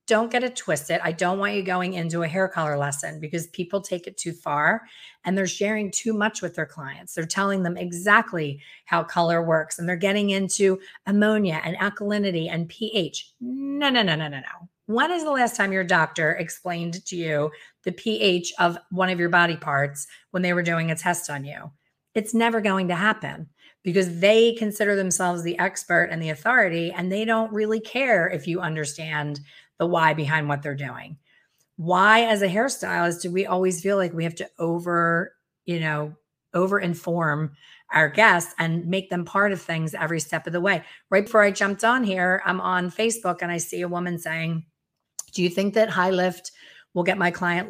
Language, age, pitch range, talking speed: English, 30-49, 165-195 Hz, 200 wpm